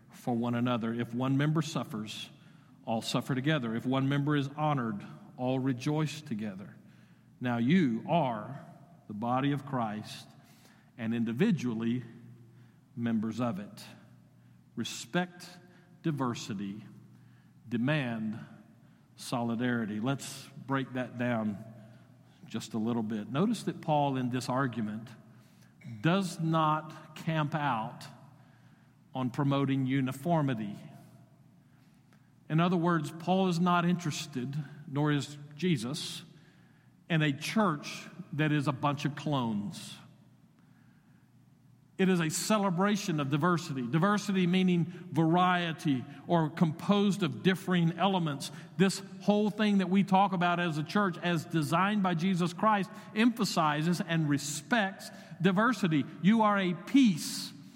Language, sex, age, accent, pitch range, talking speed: English, male, 50-69, American, 125-180 Hz, 115 wpm